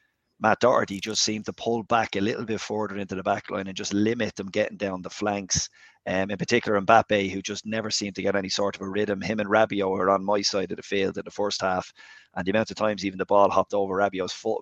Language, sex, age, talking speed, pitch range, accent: English, male, 30-49, 265 wpm, 100-110 Hz, Irish